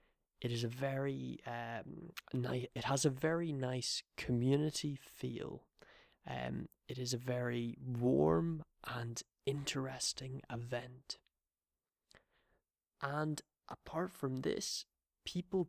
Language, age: English, 20-39